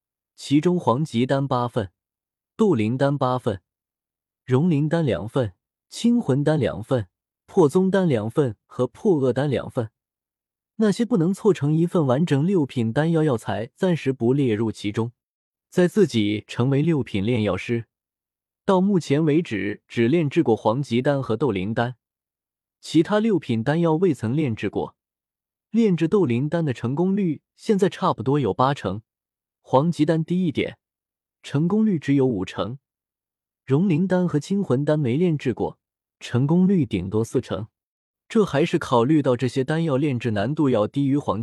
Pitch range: 110-160 Hz